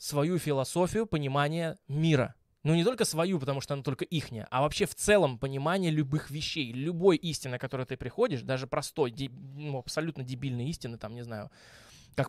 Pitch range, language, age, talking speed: 130-160 Hz, Russian, 20-39, 175 wpm